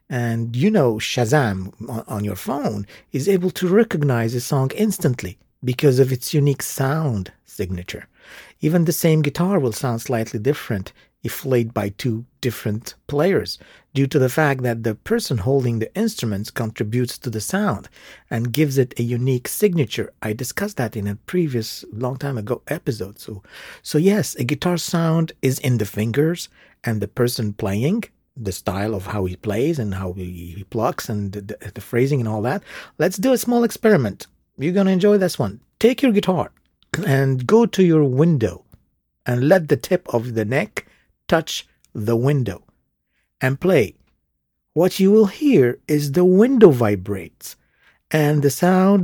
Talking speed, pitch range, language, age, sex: 165 wpm, 110-165 Hz, English, 50-69, male